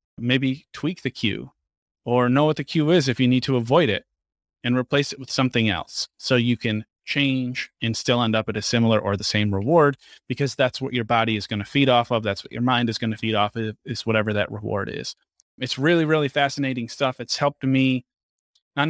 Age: 30-49